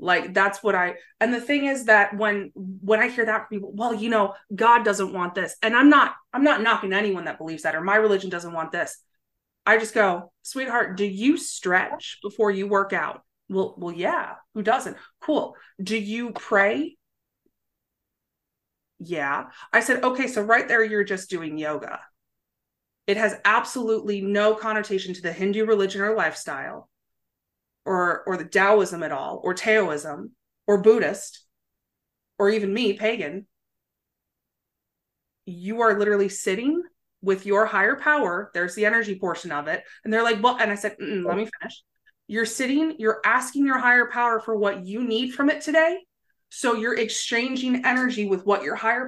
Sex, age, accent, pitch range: female, 30-49, American, 195-235 Hz